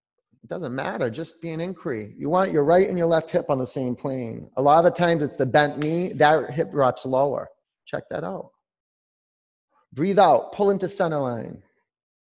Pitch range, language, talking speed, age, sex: 110-165 Hz, English, 195 wpm, 30-49, male